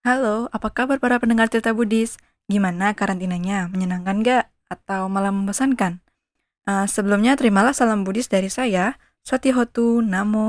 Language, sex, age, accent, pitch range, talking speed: Indonesian, female, 20-39, native, 185-235 Hz, 130 wpm